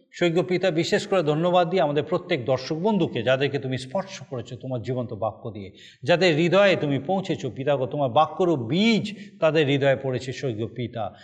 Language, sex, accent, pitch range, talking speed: Bengali, male, native, 140-195 Hz, 165 wpm